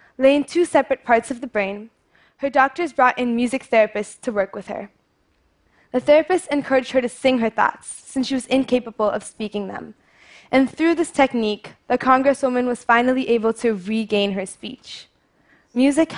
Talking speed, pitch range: 170 wpm, 210-260 Hz